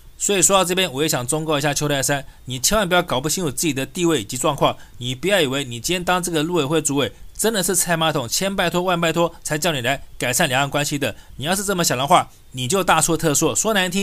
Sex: male